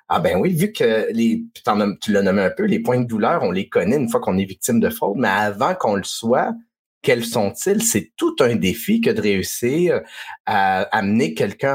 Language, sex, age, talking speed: French, male, 30-49, 215 wpm